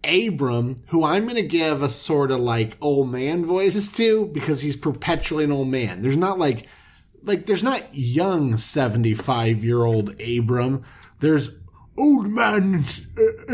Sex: male